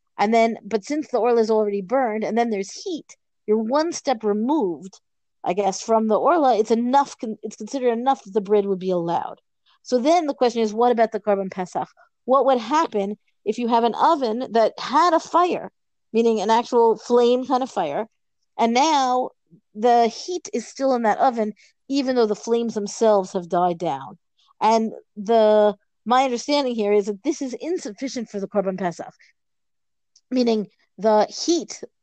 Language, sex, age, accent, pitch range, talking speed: English, female, 40-59, American, 200-245 Hz, 180 wpm